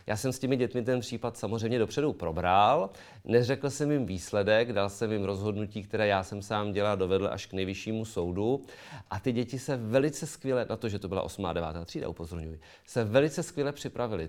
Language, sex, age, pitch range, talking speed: Czech, male, 40-59, 105-135 Hz, 195 wpm